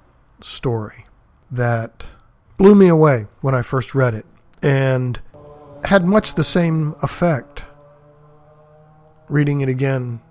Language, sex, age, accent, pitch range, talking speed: English, male, 50-69, American, 120-145 Hz, 110 wpm